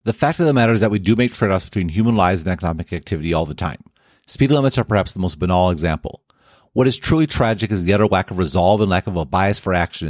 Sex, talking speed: male, 265 wpm